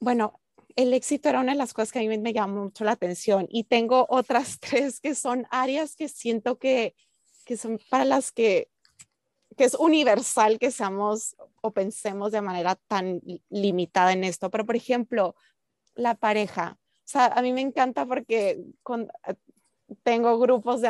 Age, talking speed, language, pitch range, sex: 20-39, 175 wpm, Spanish, 205-250 Hz, female